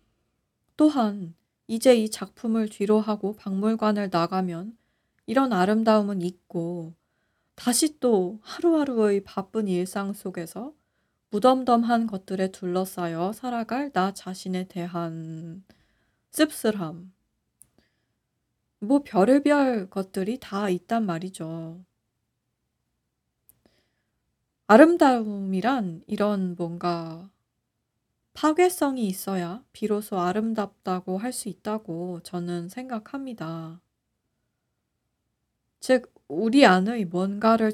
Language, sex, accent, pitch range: Korean, female, native, 180-240 Hz